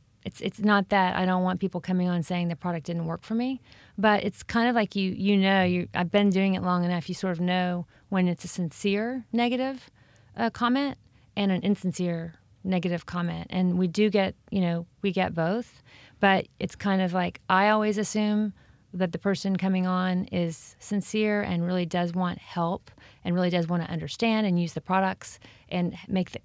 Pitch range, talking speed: 170-195 Hz, 200 wpm